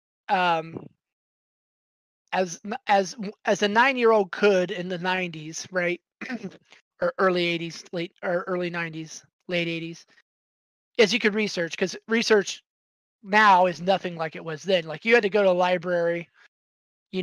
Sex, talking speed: male, 155 wpm